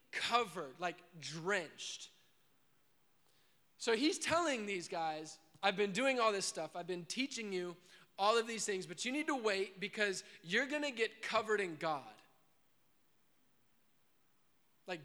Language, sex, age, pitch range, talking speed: English, male, 20-39, 155-215 Hz, 145 wpm